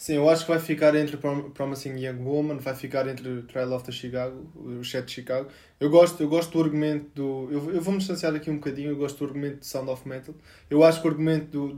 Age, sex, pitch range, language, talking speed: 20-39, male, 145-175 Hz, Portuguese, 265 wpm